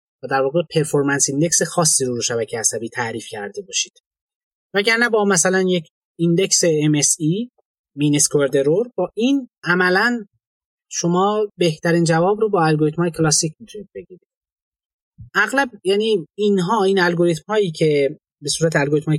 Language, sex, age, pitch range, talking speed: Persian, male, 30-49, 155-205 Hz, 130 wpm